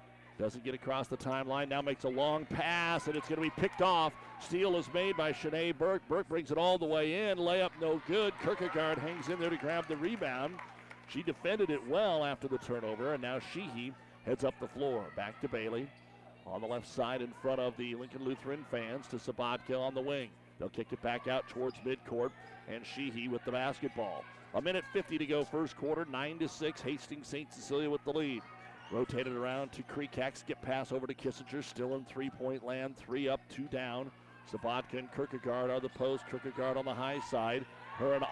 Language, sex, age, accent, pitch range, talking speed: English, male, 50-69, American, 130-150 Hz, 200 wpm